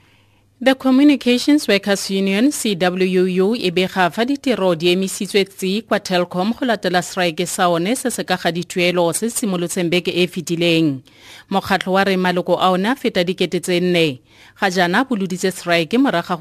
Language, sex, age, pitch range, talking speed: English, female, 30-49, 150-190 Hz, 115 wpm